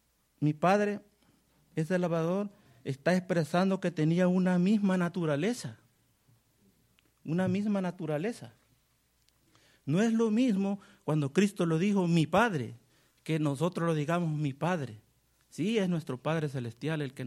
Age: 50-69